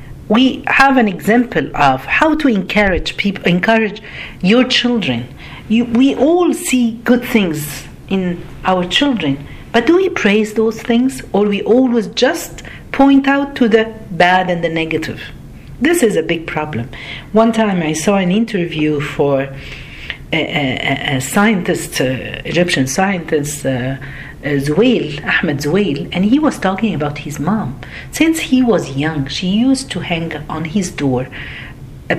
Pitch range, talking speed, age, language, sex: 155-235 Hz, 155 wpm, 50-69, Arabic, female